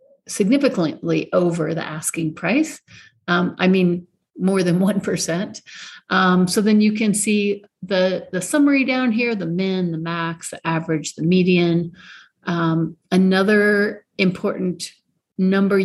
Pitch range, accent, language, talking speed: 170-210 Hz, American, English, 130 wpm